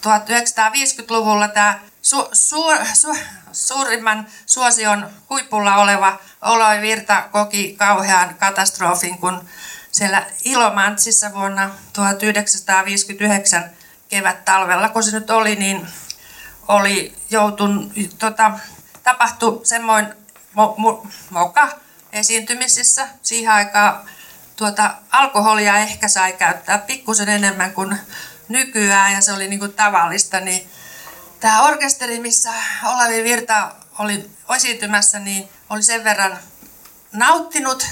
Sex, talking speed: female, 95 wpm